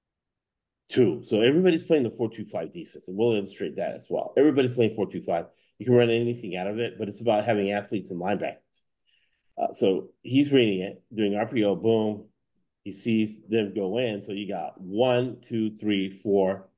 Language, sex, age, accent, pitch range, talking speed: English, male, 40-59, American, 105-125 Hz, 195 wpm